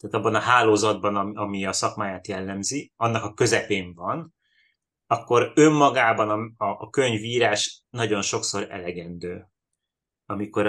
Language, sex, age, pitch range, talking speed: Hungarian, male, 30-49, 100-120 Hz, 125 wpm